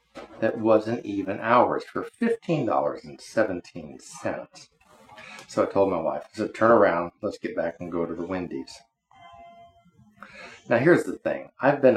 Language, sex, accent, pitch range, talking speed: English, male, American, 85-115 Hz, 145 wpm